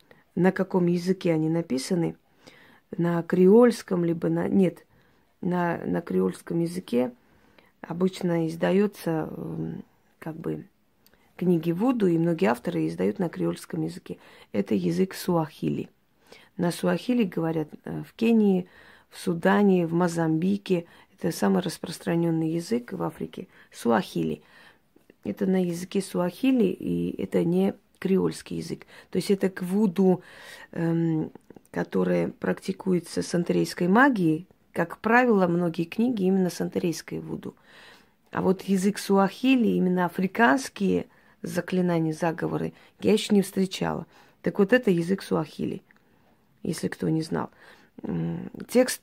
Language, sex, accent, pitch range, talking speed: Russian, female, native, 165-195 Hz, 115 wpm